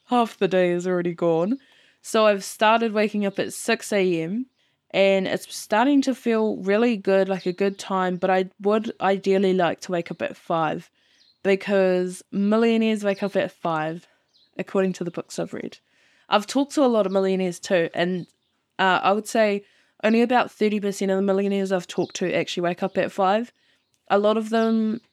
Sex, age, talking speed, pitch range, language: female, 20-39, 185 wpm, 185-210 Hz, English